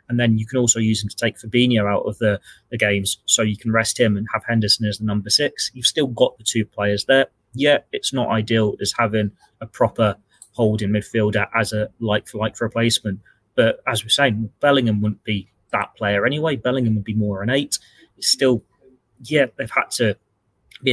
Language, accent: English, British